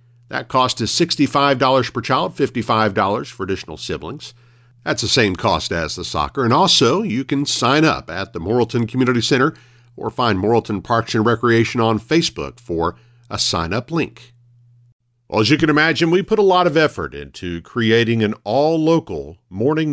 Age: 50-69